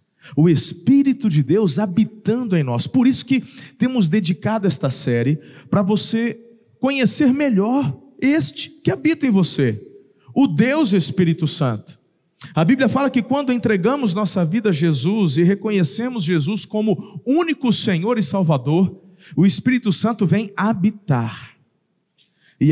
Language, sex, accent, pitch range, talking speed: Portuguese, male, Brazilian, 170-220 Hz, 135 wpm